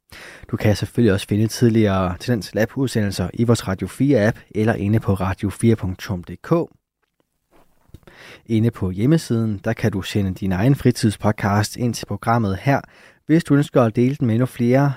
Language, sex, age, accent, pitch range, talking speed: Danish, male, 20-39, native, 100-125 Hz, 155 wpm